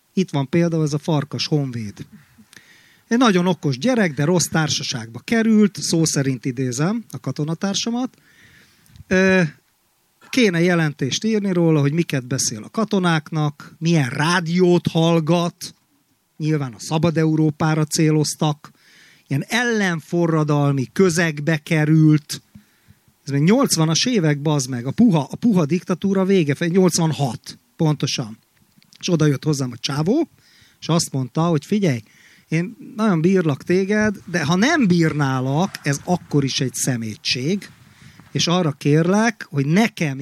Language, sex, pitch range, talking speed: Hungarian, male, 140-180 Hz, 125 wpm